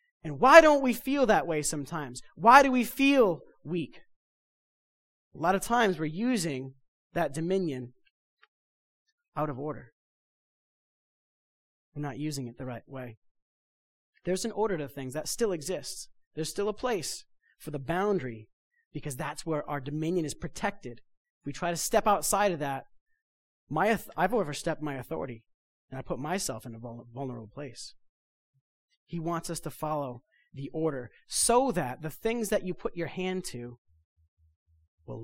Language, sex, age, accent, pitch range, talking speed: English, male, 30-49, American, 135-195 Hz, 155 wpm